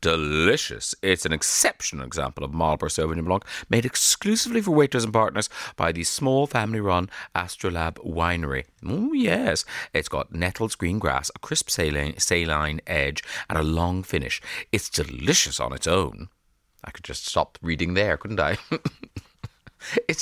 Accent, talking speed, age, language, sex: British, 155 wpm, 30-49, English, male